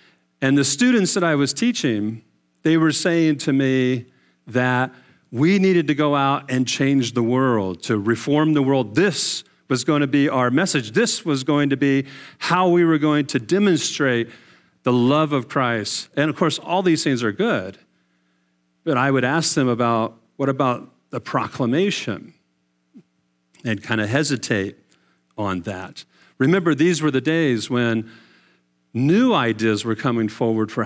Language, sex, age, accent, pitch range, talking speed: English, male, 40-59, American, 105-155 Hz, 160 wpm